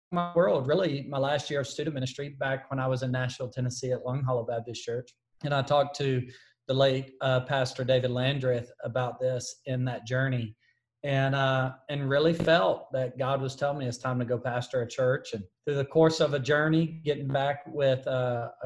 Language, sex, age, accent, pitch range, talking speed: English, male, 40-59, American, 125-145 Hz, 205 wpm